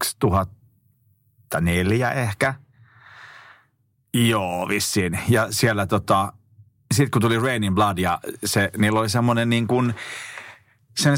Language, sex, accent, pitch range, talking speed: Finnish, male, native, 100-140 Hz, 105 wpm